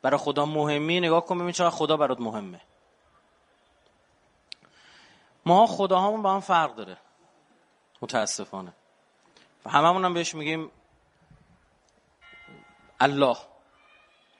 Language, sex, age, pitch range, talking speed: Persian, male, 30-49, 140-170 Hz, 90 wpm